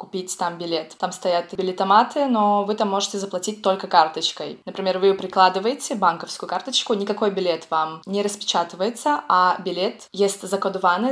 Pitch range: 175-210 Hz